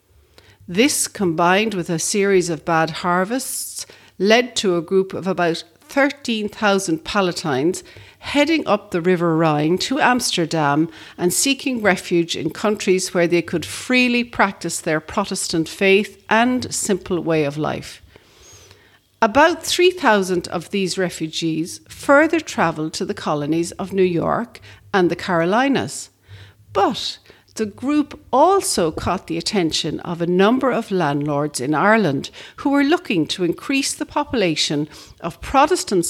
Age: 60-79